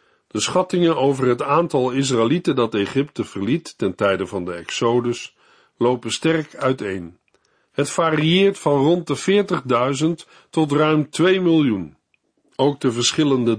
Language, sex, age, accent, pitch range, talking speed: Dutch, male, 50-69, Dutch, 125-165 Hz, 130 wpm